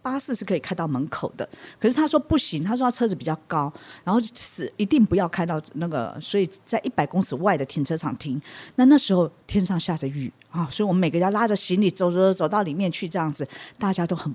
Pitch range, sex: 145-195 Hz, female